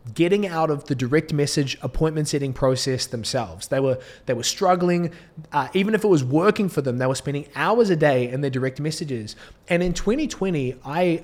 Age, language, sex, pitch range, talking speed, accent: 20-39, English, male, 130-160 Hz, 200 wpm, Australian